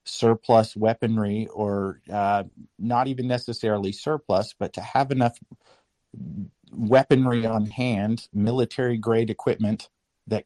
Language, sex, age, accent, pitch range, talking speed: English, male, 50-69, American, 105-125 Hz, 105 wpm